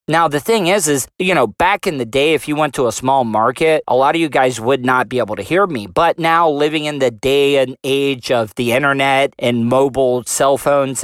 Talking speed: 245 wpm